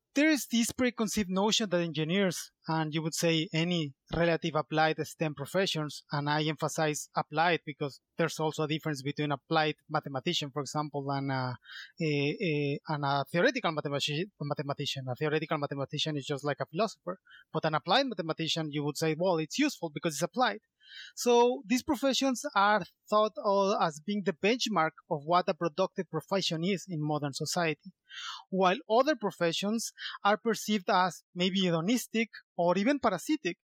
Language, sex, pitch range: English, male, 155-215 Hz